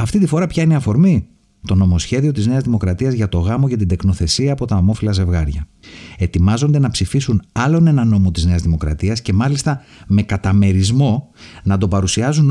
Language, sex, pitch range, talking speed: Greek, male, 95-140 Hz, 180 wpm